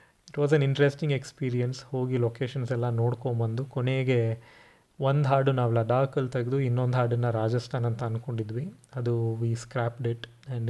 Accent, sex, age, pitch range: native, male, 20-39, 120-140 Hz